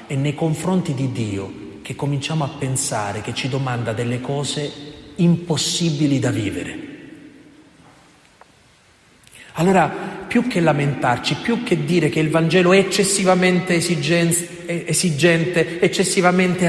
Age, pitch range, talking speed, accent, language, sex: 40-59, 125-165 Hz, 110 wpm, native, Italian, male